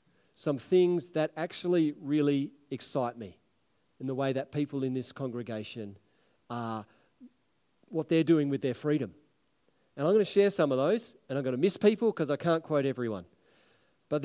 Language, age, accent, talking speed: English, 40-59, Australian, 175 wpm